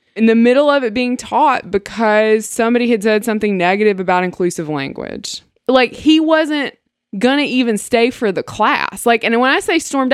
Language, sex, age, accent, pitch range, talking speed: English, female, 20-39, American, 200-260 Hz, 190 wpm